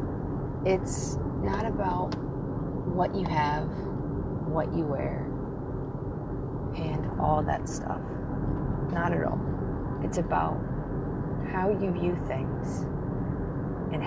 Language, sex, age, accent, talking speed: English, female, 30-49, American, 100 wpm